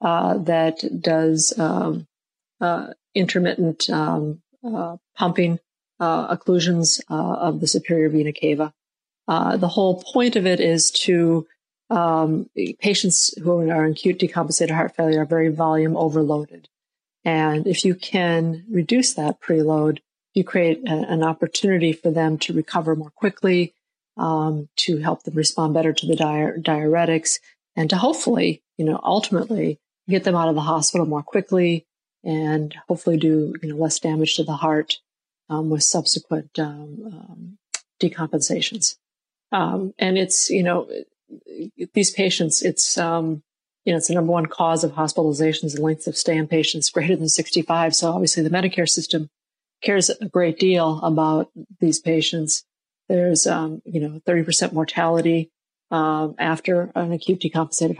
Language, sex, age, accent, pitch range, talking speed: English, female, 50-69, American, 160-180 Hz, 155 wpm